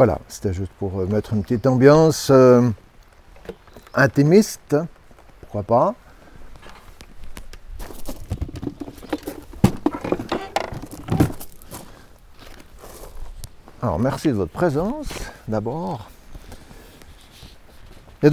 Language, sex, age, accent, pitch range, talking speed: French, male, 60-79, French, 105-140 Hz, 60 wpm